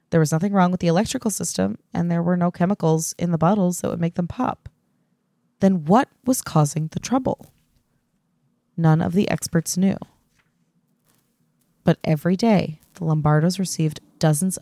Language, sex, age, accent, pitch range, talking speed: English, female, 20-39, American, 160-195 Hz, 160 wpm